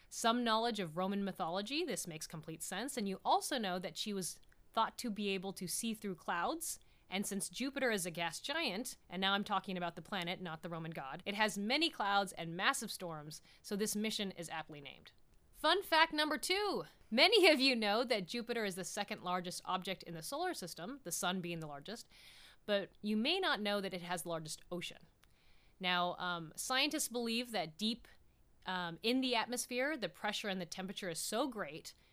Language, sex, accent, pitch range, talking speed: English, female, American, 180-235 Hz, 200 wpm